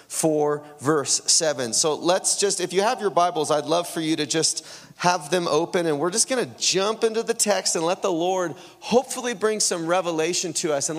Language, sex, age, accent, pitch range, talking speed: English, male, 30-49, American, 135-215 Hz, 220 wpm